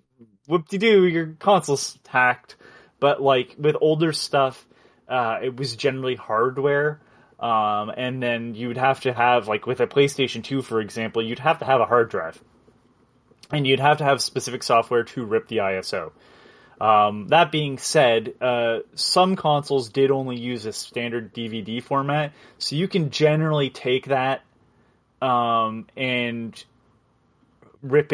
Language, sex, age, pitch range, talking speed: English, male, 20-39, 115-140 Hz, 145 wpm